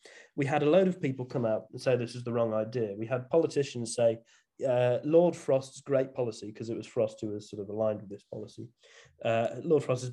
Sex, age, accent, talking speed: male, 30-49, British, 235 wpm